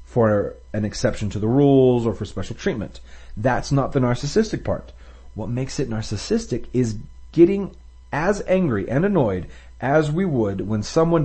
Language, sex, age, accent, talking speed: English, male, 40-59, American, 160 wpm